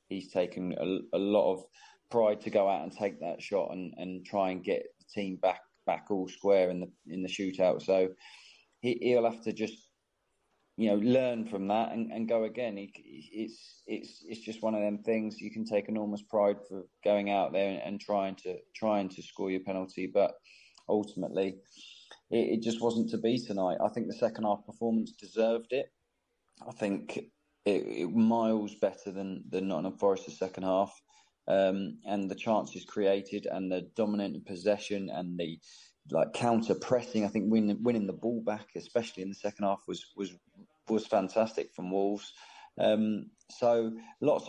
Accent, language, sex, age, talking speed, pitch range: British, English, male, 20-39, 185 wpm, 100-115 Hz